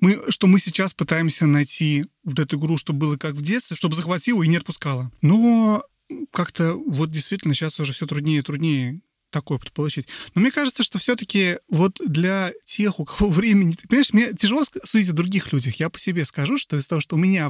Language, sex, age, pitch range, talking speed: Russian, male, 30-49, 145-195 Hz, 210 wpm